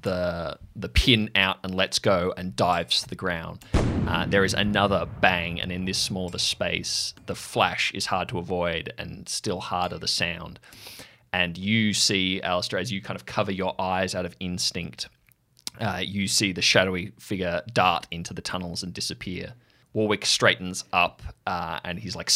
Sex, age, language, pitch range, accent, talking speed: male, 20-39, English, 90-115 Hz, Australian, 175 wpm